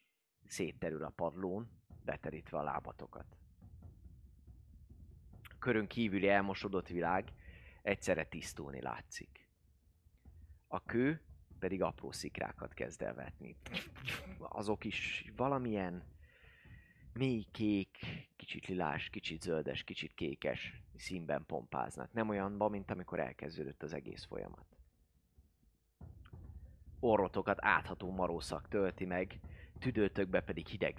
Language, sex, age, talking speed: Hungarian, male, 30-49, 95 wpm